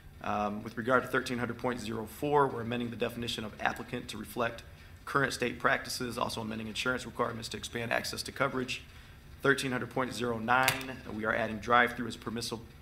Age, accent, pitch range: 30-49, American, 105-120 Hz